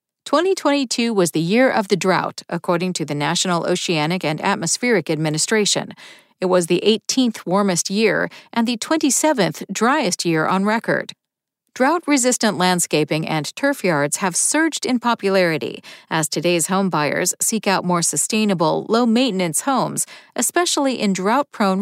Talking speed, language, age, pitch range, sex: 140 wpm, English, 50-69, 170-245 Hz, female